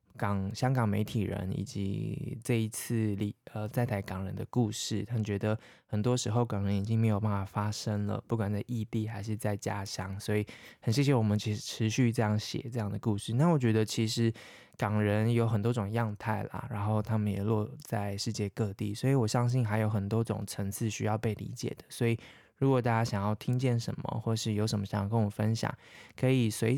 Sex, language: male, Chinese